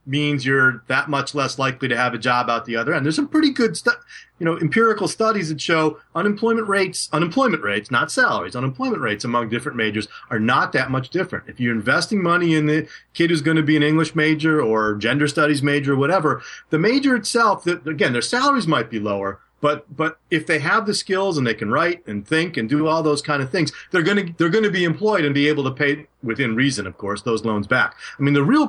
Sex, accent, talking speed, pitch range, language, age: male, American, 240 wpm, 115-160 Hz, English, 40-59